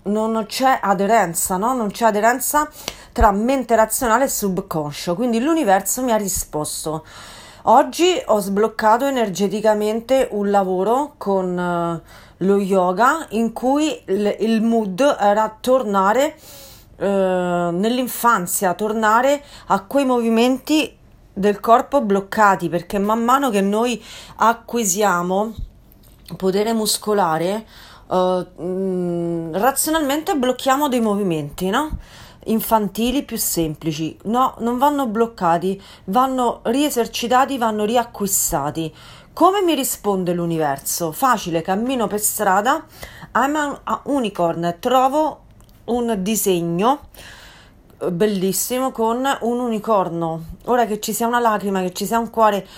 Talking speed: 115 wpm